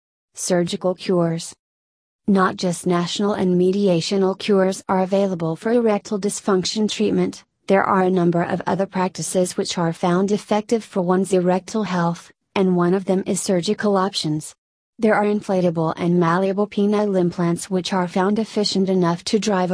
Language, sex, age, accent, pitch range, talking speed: English, female, 30-49, American, 175-200 Hz, 150 wpm